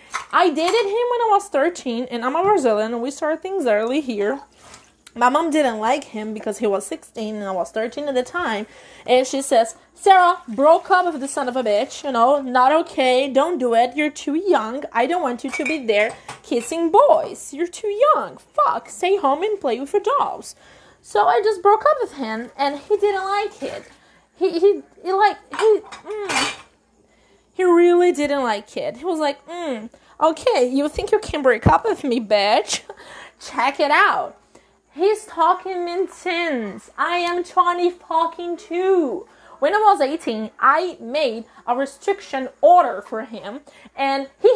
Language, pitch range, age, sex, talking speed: English, 255-370 Hz, 20-39, female, 185 wpm